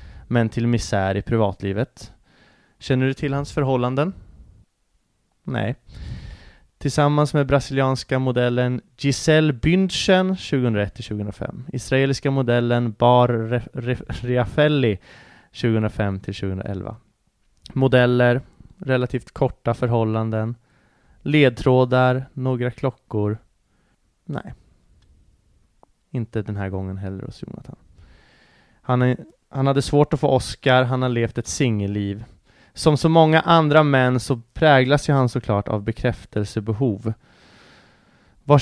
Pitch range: 105-135 Hz